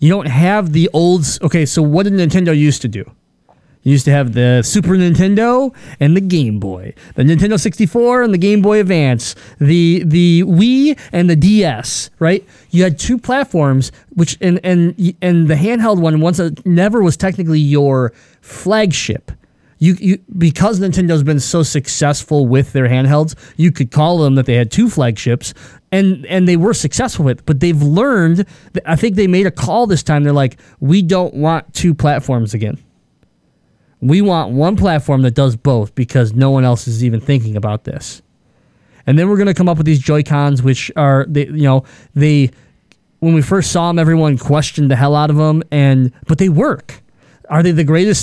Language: English